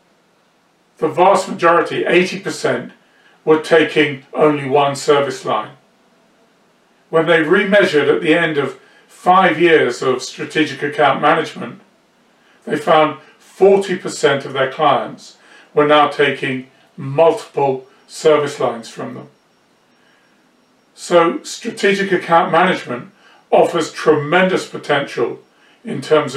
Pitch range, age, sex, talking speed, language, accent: 145-180 Hz, 40-59, male, 105 wpm, English, British